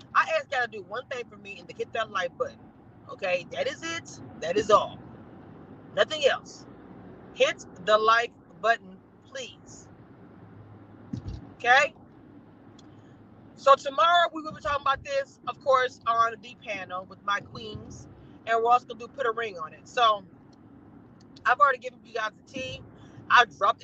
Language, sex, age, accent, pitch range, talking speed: English, female, 30-49, American, 235-315 Hz, 170 wpm